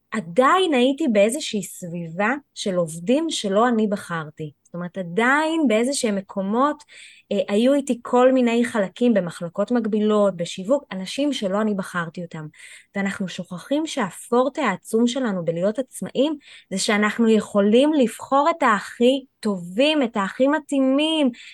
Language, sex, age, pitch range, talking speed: Hebrew, female, 20-39, 195-270 Hz, 125 wpm